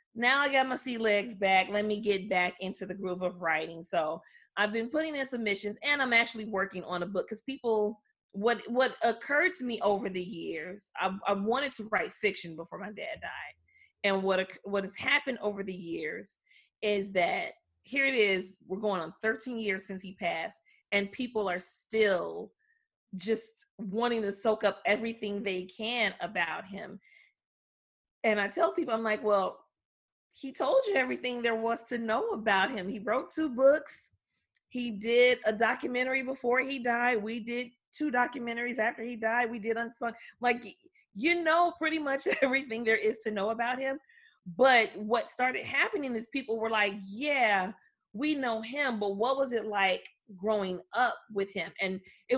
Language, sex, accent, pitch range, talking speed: English, female, American, 200-260 Hz, 180 wpm